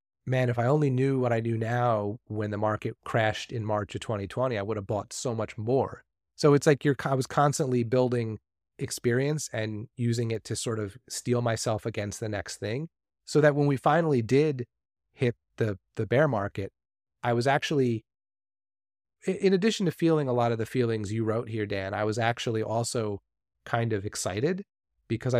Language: English